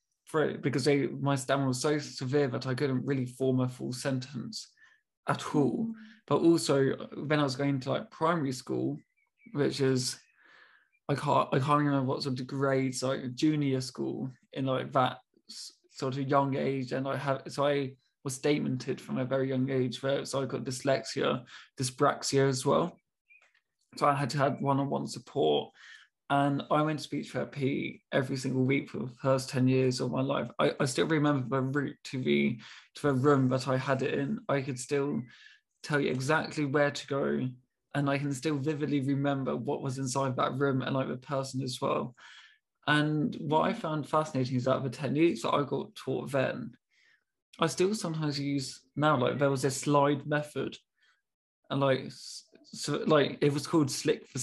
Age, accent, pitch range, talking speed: 20-39, British, 130-145 Hz, 185 wpm